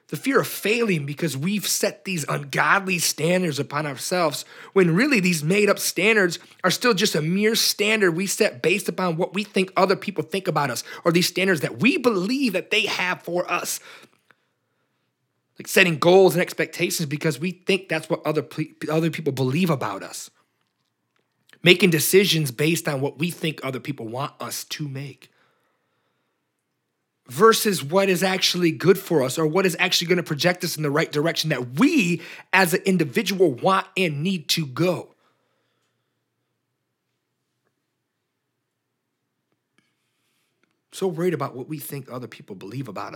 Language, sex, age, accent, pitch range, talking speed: English, male, 30-49, American, 145-190 Hz, 160 wpm